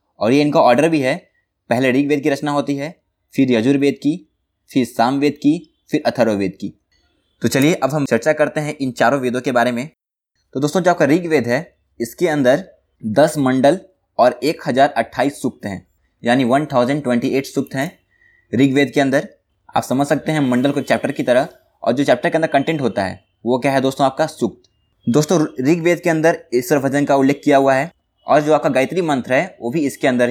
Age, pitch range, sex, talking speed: 20-39, 120-155 Hz, male, 195 wpm